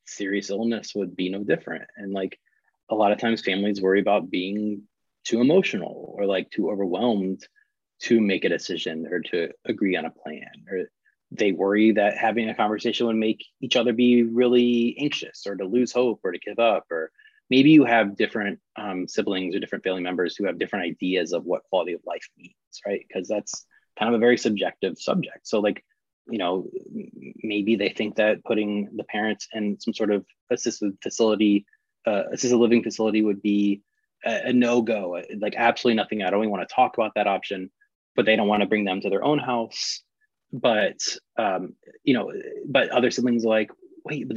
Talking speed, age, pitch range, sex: 195 wpm, 20-39, 100-125 Hz, male